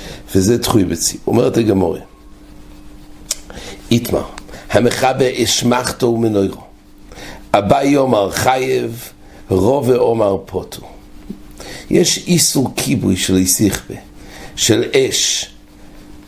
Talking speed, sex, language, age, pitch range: 70 wpm, male, English, 60-79, 95-125 Hz